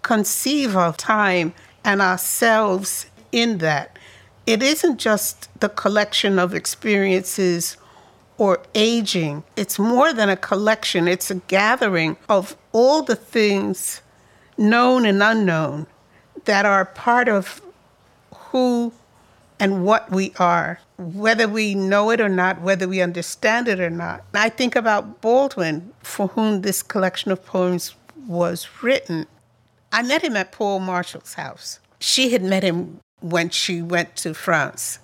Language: English